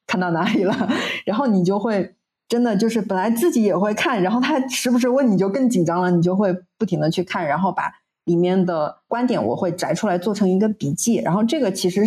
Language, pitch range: Chinese, 170-210 Hz